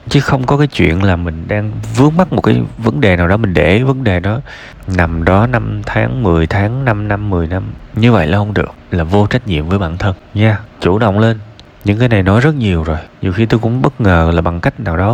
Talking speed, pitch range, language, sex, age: 265 wpm, 85-115 Hz, Vietnamese, male, 20-39